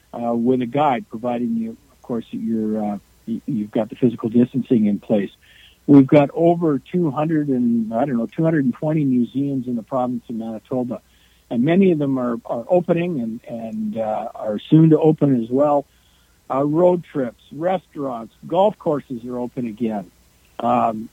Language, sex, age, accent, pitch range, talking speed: English, male, 60-79, American, 115-150 Hz, 165 wpm